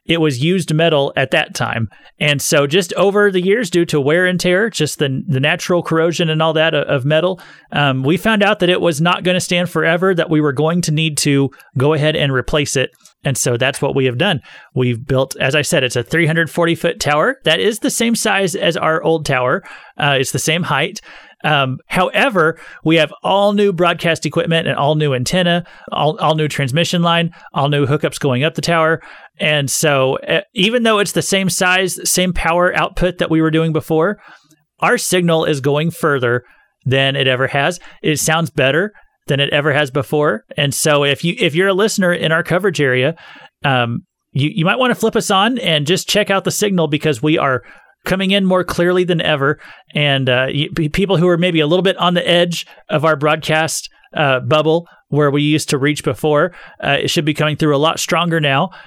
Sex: male